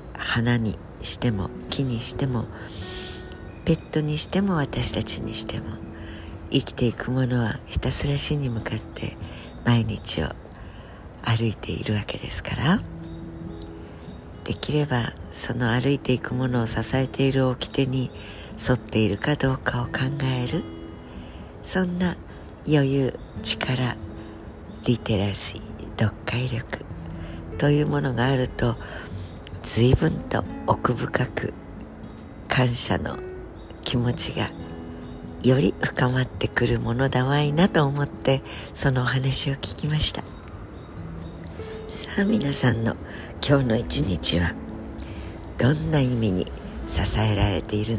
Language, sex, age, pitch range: Japanese, female, 60-79, 85-130 Hz